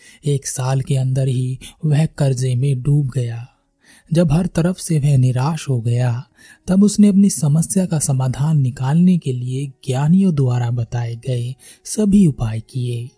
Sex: male